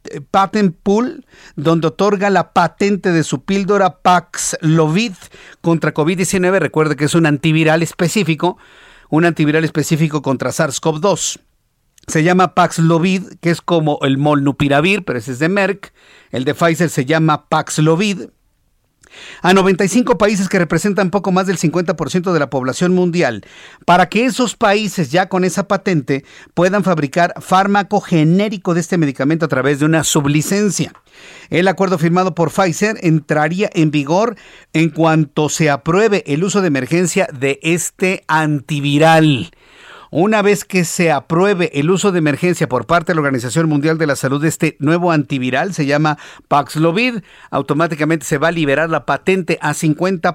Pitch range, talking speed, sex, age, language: 155-190 Hz, 155 wpm, male, 50-69, Spanish